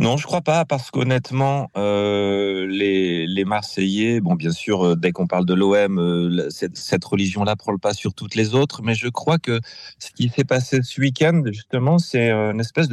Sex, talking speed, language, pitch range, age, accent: male, 205 wpm, French, 100-125 Hz, 30-49, French